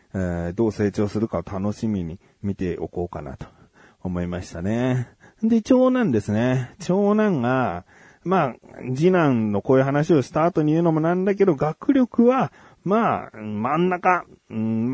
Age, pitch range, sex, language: 40-59, 100-155 Hz, male, Japanese